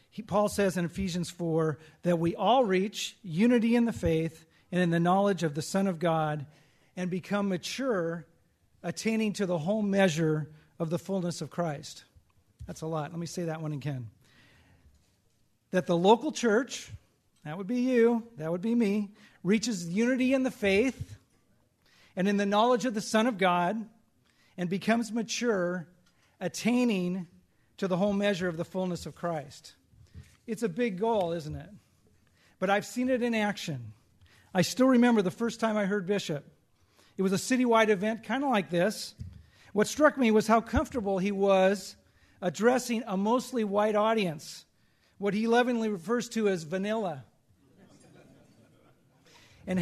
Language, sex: English, male